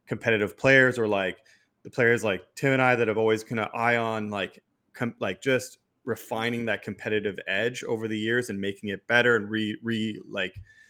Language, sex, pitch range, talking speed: English, male, 105-130 Hz, 195 wpm